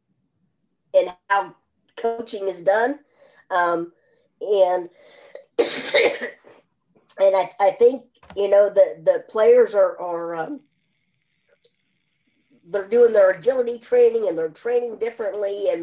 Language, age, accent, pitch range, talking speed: English, 40-59, American, 195-290 Hz, 110 wpm